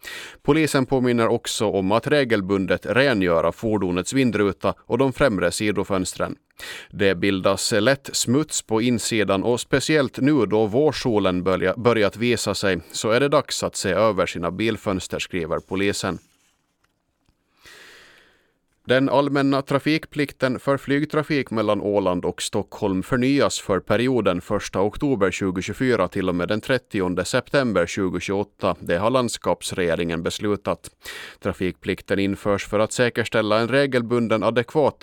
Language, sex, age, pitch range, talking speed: Swedish, male, 30-49, 95-130 Hz, 125 wpm